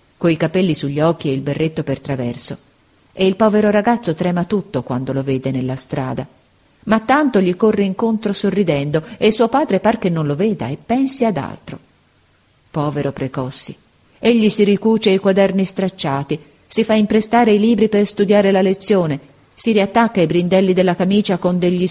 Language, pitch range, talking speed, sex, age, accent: Italian, 145-205 Hz, 175 wpm, female, 40-59, native